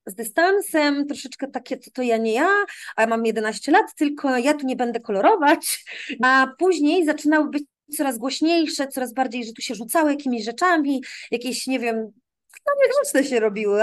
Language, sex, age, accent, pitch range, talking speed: Polish, female, 30-49, native, 240-325 Hz, 180 wpm